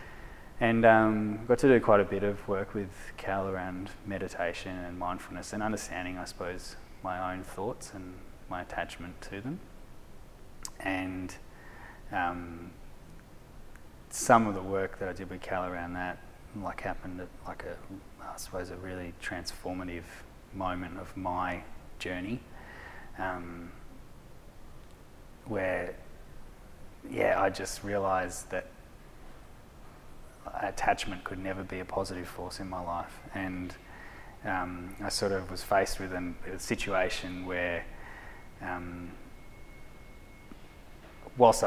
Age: 20-39